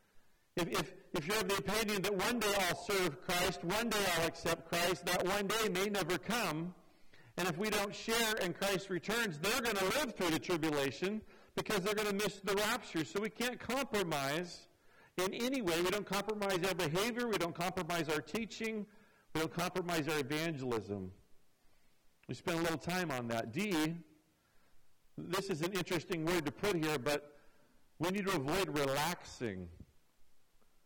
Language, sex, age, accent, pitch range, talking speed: English, male, 50-69, American, 150-195 Hz, 175 wpm